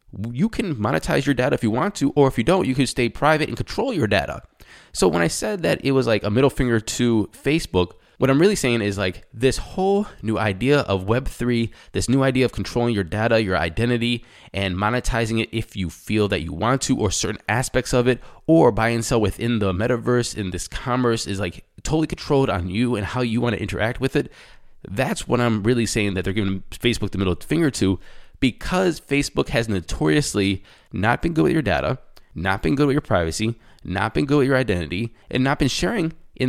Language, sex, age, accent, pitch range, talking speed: English, male, 20-39, American, 100-130 Hz, 220 wpm